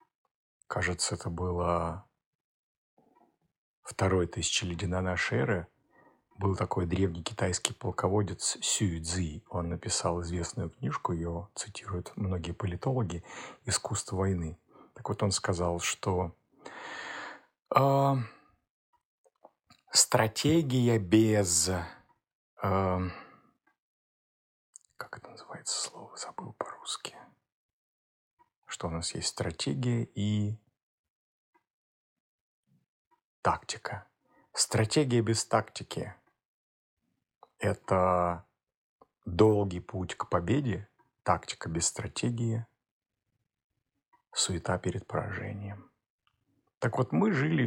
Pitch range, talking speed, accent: 90-110 Hz, 80 wpm, native